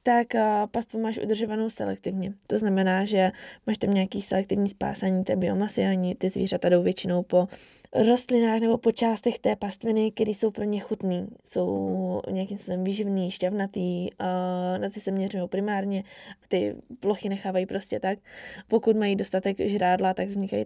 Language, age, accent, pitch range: Czech, 20-39, native, 190-215 Hz